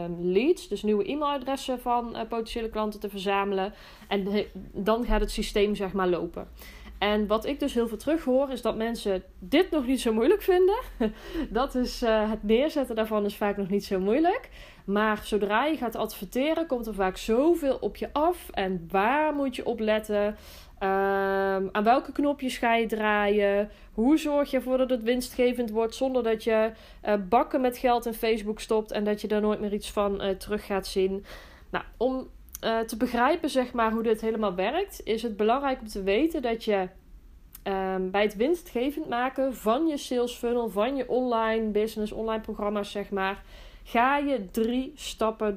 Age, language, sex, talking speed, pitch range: 20-39, Dutch, female, 185 wpm, 200-255 Hz